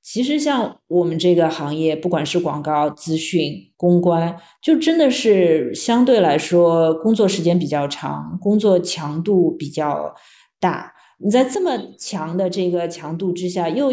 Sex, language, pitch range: female, Chinese, 165-220 Hz